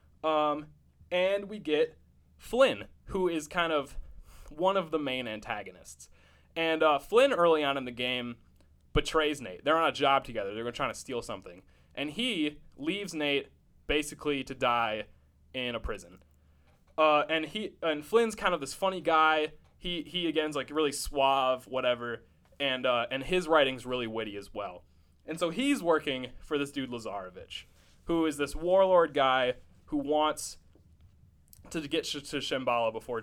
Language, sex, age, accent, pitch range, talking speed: English, male, 20-39, American, 110-165 Hz, 165 wpm